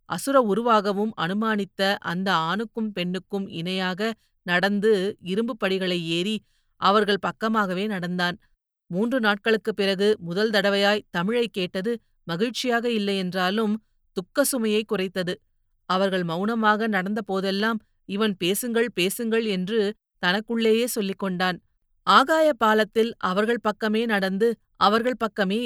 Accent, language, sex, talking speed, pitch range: native, Tamil, female, 100 wpm, 190-225 Hz